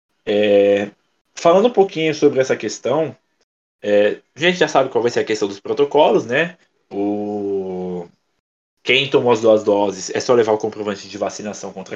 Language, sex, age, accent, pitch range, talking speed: Portuguese, male, 20-39, Brazilian, 110-160 Hz, 170 wpm